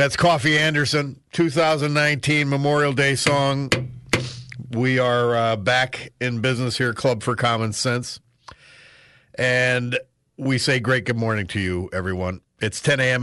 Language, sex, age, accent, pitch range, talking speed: English, male, 50-69, American, 120-150 Hz, 135 wpm